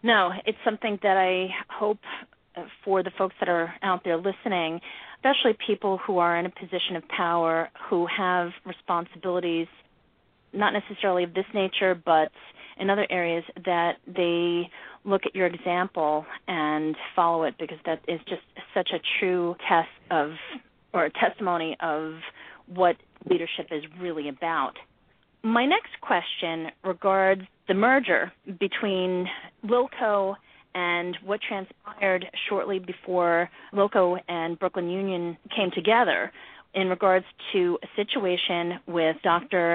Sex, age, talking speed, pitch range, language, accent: female, 30-49, 135 wpm, 170-210 Hz, English, American